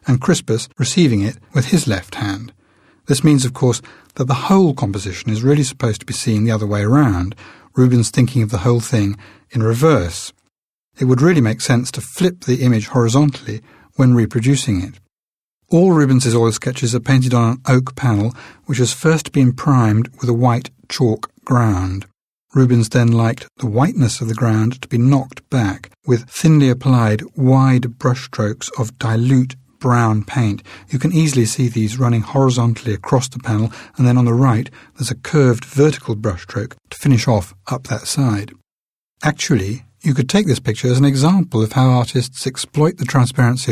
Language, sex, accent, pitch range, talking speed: English, male, British, 110-135 Hz, 180 wpm